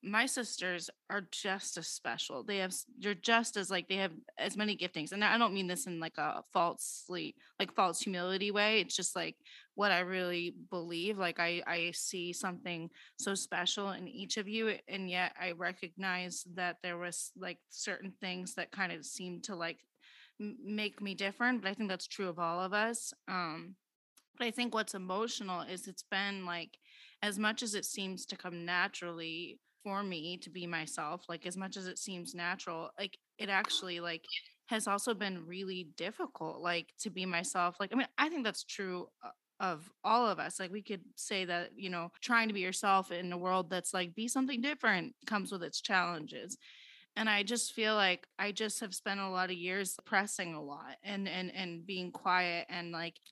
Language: English